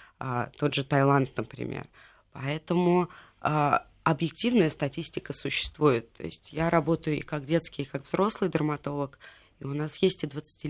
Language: Russian